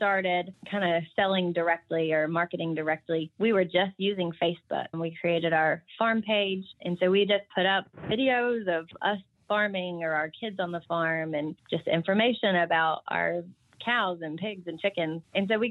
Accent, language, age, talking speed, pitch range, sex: American, English, 20-39, 185 wpm, 165-200 Hz, female